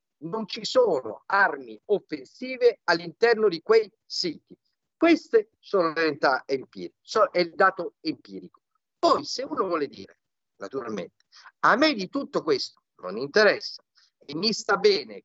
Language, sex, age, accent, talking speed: Italian, male, 50-69, native, 140 wpm